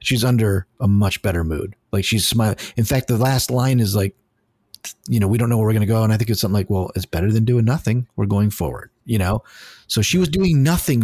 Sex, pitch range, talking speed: male, 105-130 Hz, 260 wpm